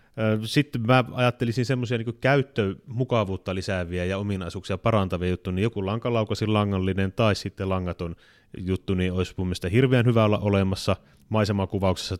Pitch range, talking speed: 90-110 Hz, 140 wpm